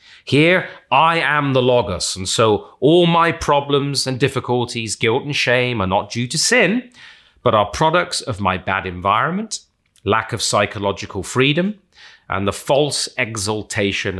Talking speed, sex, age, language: 150 wpm, male, 30-49, English